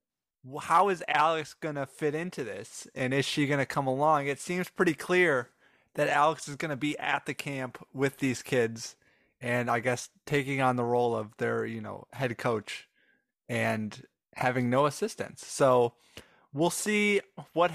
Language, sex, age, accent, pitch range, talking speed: English, male, 20-39, American, 125-155 Hz, 175 wpm